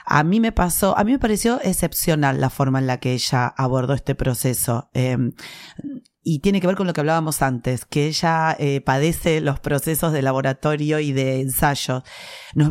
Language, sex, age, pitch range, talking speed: Spanish, female, 30-49, 135-165 Hz, 190 wpm